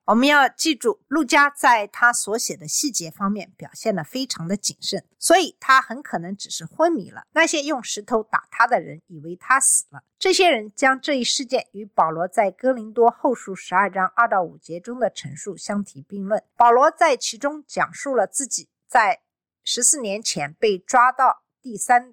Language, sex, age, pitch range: Chinese, female, 50-69, 185-275 Hz